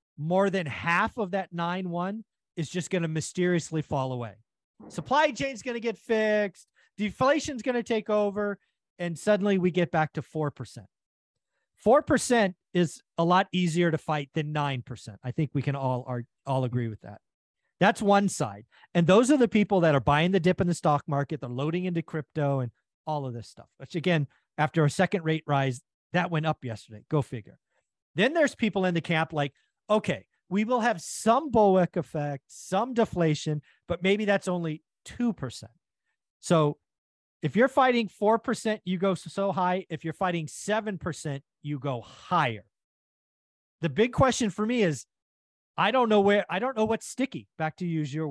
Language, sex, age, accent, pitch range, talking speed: English, male, 40-59, American, 140-200 Hz, 185 wpm